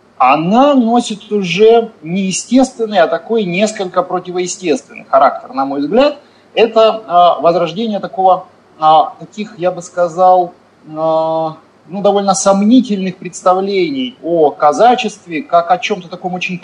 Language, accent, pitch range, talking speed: Russian, native, 155-225 Hz, 110 wpm